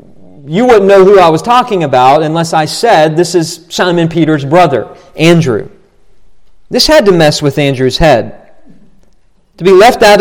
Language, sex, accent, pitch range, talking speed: English, male, American, 145-180 Hz, 165 wpm